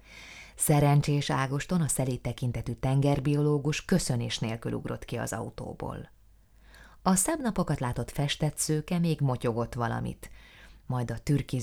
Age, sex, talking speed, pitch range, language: 20-39, female, 115 wpm, 115-145 Hz, Hungarian